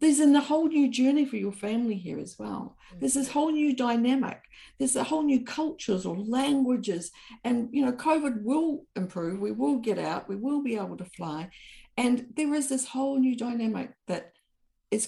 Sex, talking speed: female, 195 wpm